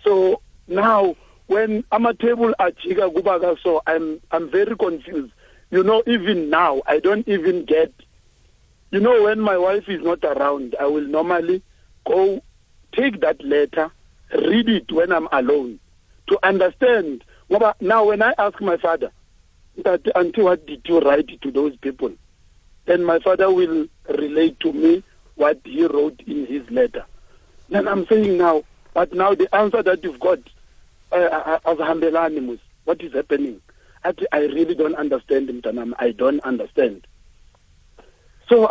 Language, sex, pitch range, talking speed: English, male, 160-215 Hz, 150 wpm